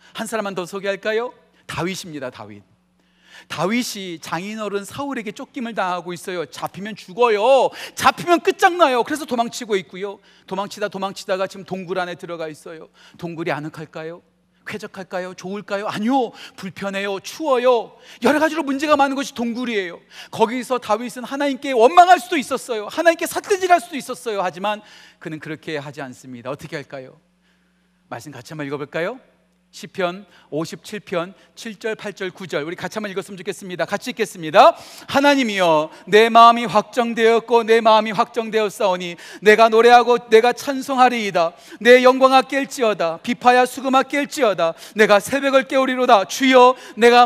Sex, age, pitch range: male, 40-59, 180-255 Hz